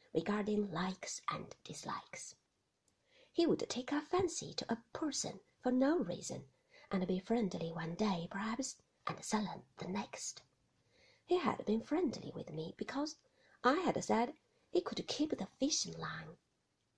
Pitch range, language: 200-275 Hz, Chinese